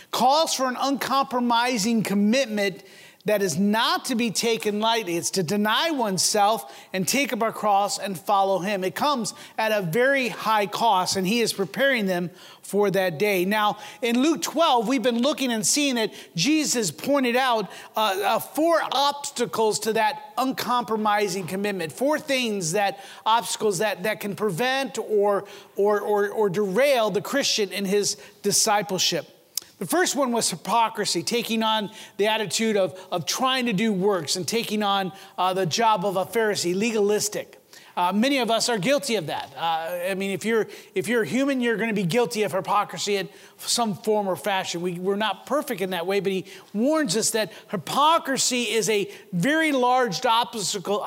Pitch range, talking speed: 195-245 Hz, 175 wpm